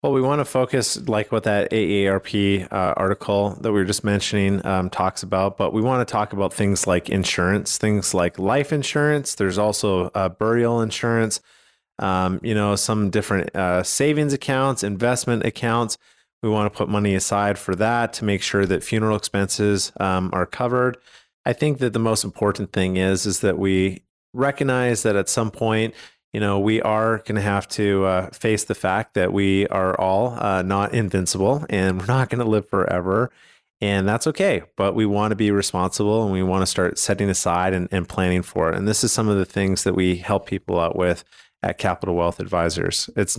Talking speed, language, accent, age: 200 wpm, English, American, 30-49